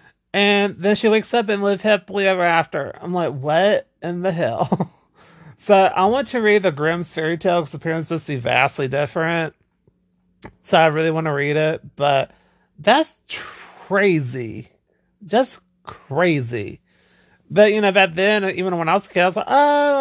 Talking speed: 175 wpm